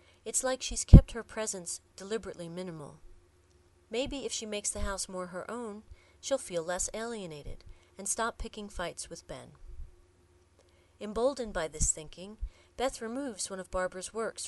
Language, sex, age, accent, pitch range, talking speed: English, female, 40-59, American, 150-225 Hz, 155 wpm